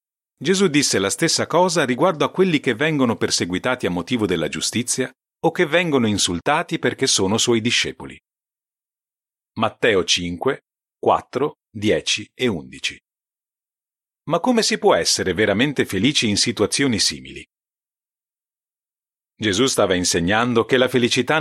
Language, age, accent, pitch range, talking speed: Italian, 40-59, native, 115-165 Hz, 125 wpm